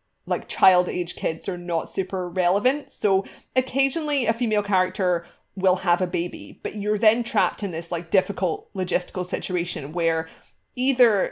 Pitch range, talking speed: 185-235 Hz, 155 wpm